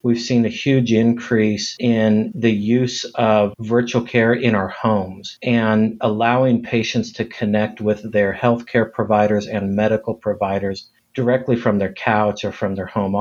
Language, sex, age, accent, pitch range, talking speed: English, male, 50-69, American, 105-120 Hz, 160 wpm